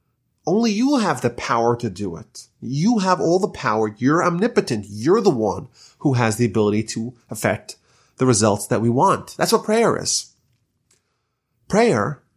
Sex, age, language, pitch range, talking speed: male, 30-49, English, 120-185 Hz, 165 wpm